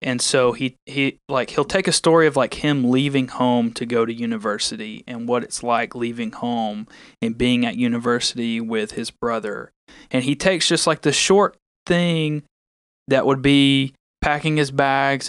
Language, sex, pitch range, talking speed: English, male, 120-155 Hz, 175 wpm